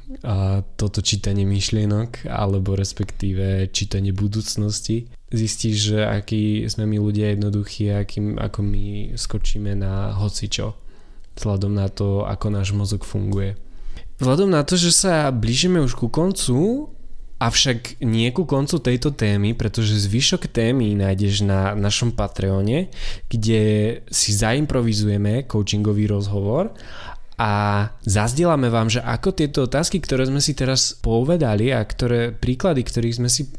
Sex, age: male, 20-39